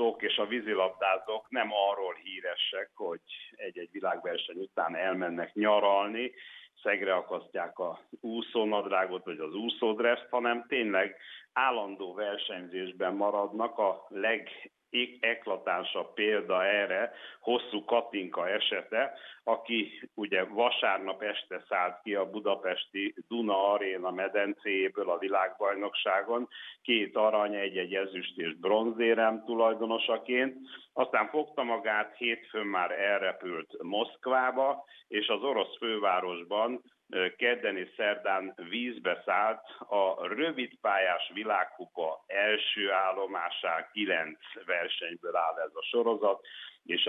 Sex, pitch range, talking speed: male, 95-120 Hz, 100 wpm